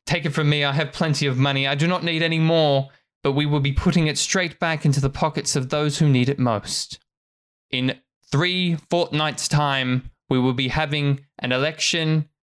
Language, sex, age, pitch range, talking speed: English, male, 20-39, 125-155 Hz, 200 wpm